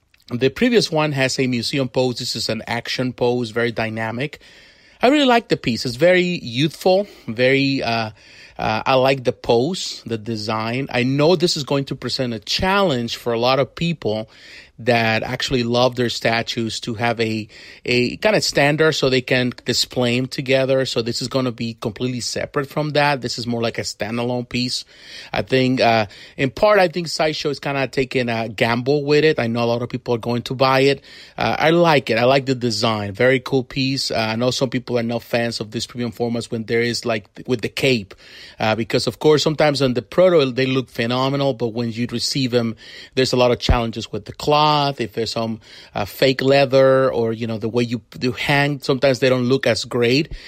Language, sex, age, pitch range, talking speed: English, male, 30-49, 115-140 Hz, 215 wpm